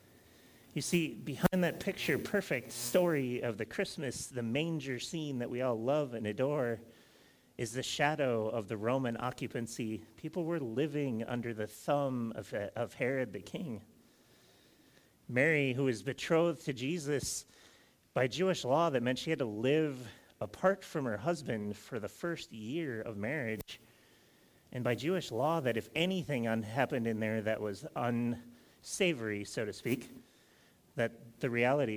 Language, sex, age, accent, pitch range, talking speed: English, male, 30-49, American, 110-145 Hz, 150 wpm